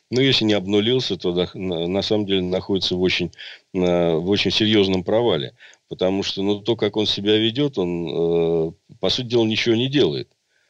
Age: 50-69